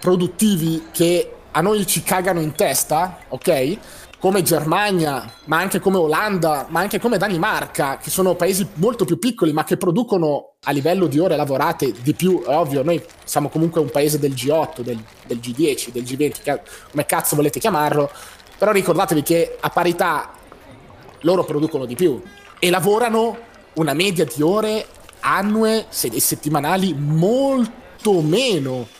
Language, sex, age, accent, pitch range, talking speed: Italian, male, 20-39, native, 145-190 Hz, 150 wpm